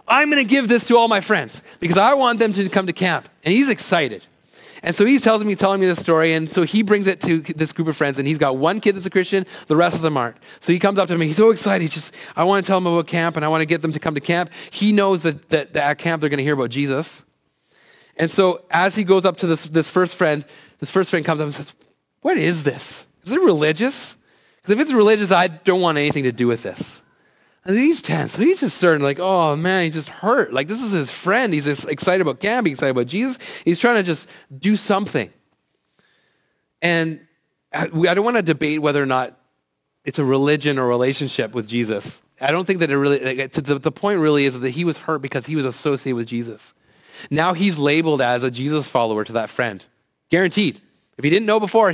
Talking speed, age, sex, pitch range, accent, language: 245 wpm, 30-49, male, 145-195 Hz, American, English